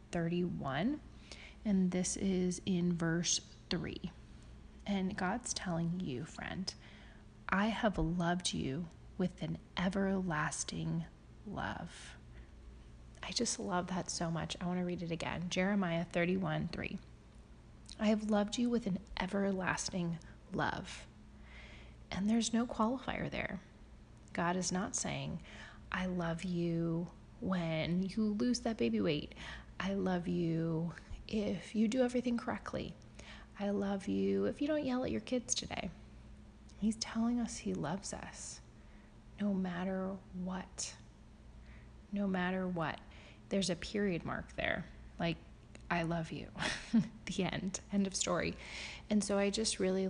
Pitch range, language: 170-200 Hz, English